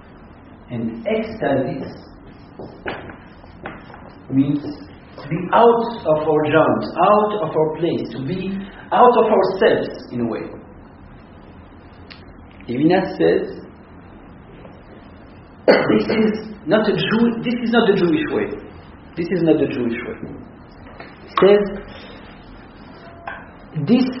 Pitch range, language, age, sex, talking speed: 135-195 Hz, English, 50-69, male, 105 wpm